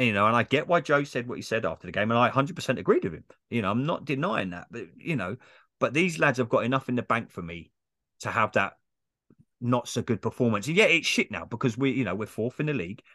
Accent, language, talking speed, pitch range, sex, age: British, English, 265 wpm, 105-140 Hz, male, 30-49